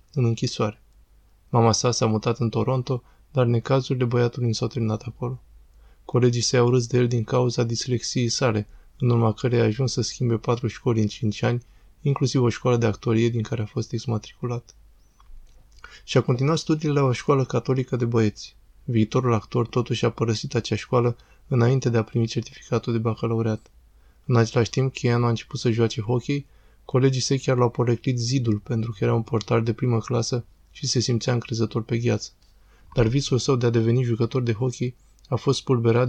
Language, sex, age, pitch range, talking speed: Romanian, male, 20-39, 115-130 Hz, 185 wpm